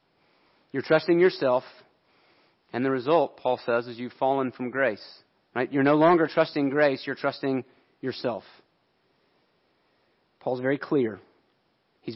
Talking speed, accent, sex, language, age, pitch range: 130 wpm, American, male, English, 40-59, 130-155 Hz